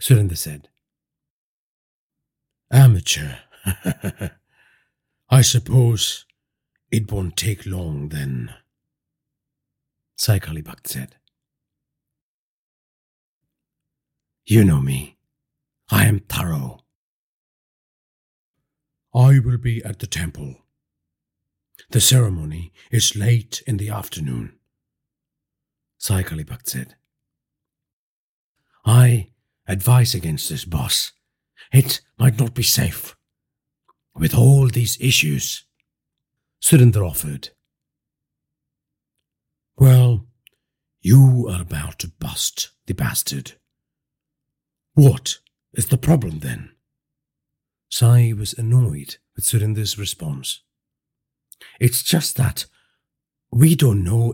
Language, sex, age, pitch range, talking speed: English, male, 60-79, 85-125 Hz, 80 wpm